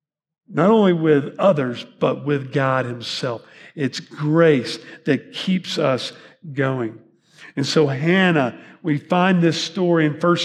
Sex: male